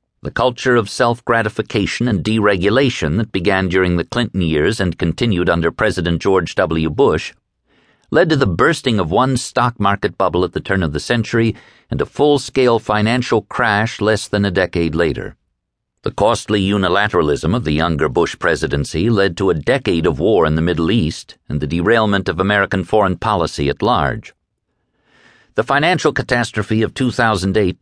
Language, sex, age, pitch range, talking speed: English, male, 50-69, 85-115 Hz, 165 wpm